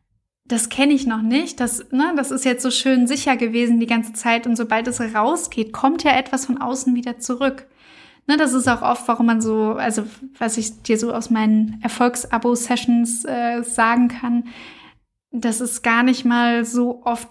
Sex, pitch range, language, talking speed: female, 230-255 Hz, German, 190 wpm